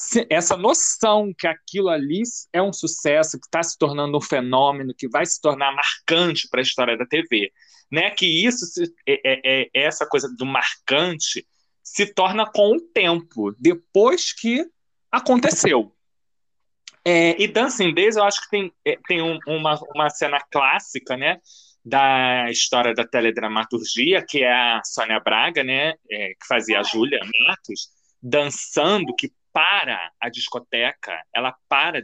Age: 20-39